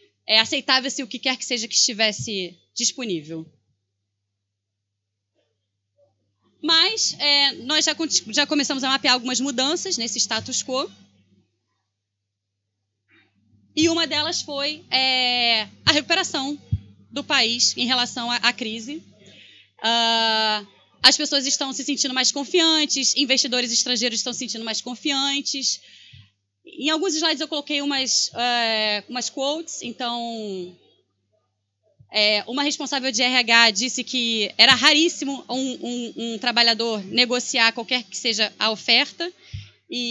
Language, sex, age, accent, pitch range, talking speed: Portuguese, female, 20-39, Brazilian, 215-285 Hz, 115 wpm